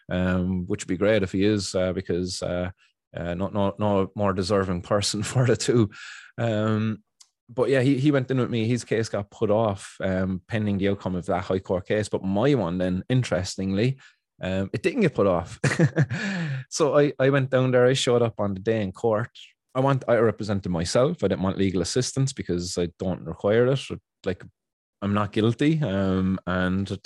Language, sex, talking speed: English, male, 200 wpm